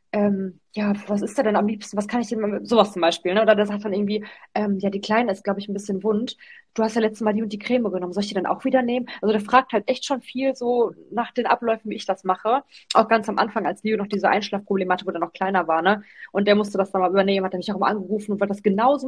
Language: German